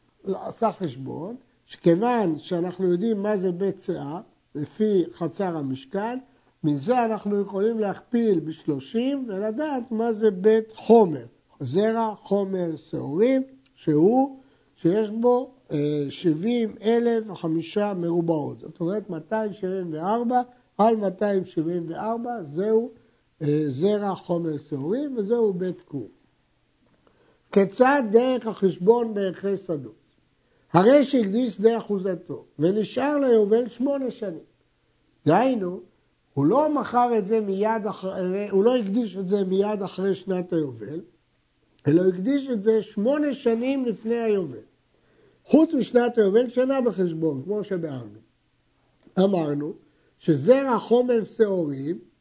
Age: 60-79